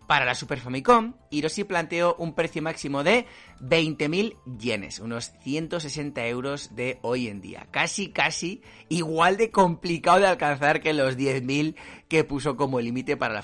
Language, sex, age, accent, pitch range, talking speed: Spanish, male, 30-49, Spanish, 130-170 Hz, 155 wpm